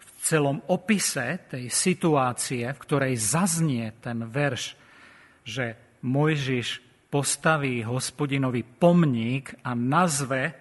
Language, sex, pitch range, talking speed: Slovak, male, 125-155 Hz, 95 wpm